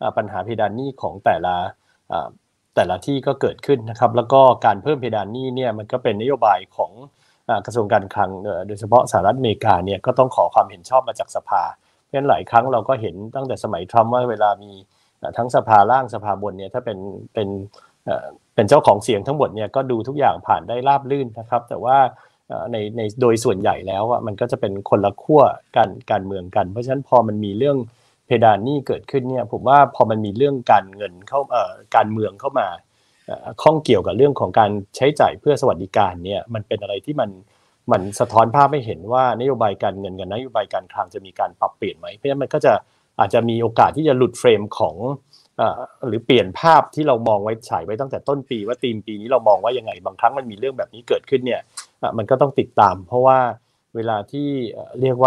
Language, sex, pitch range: Thai, male, 105-135 Hz